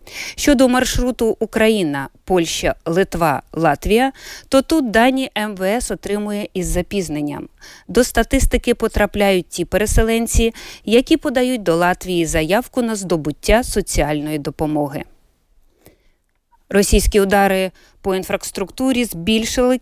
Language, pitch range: Ukrainian, 175-245 Hz